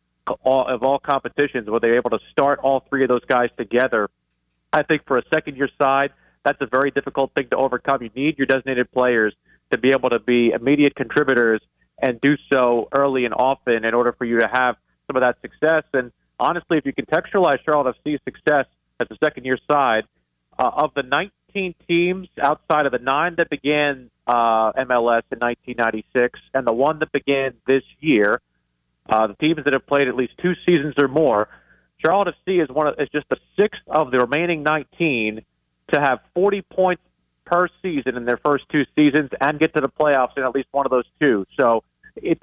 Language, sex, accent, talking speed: English, male, American, 195 wpm